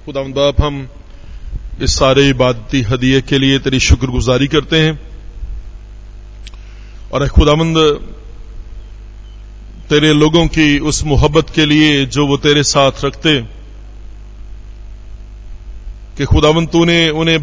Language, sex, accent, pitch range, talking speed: Hindi, male, native, 105-165 Hz, 105 wpm